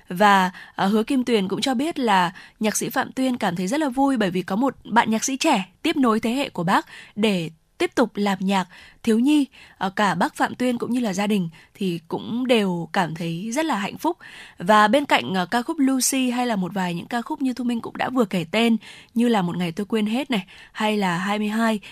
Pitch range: 195-245 Hz